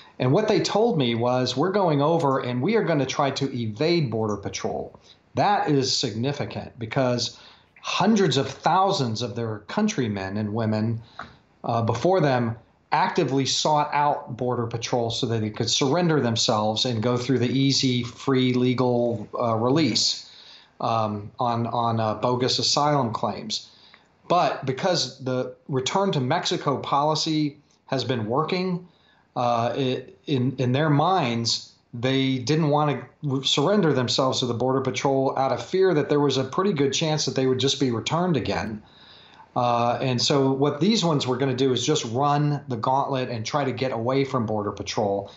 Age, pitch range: 40-59, 120-145 Hz